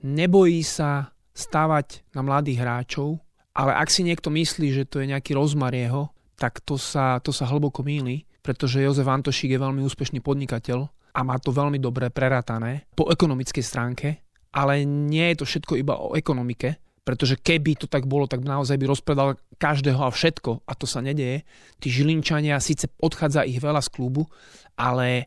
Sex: male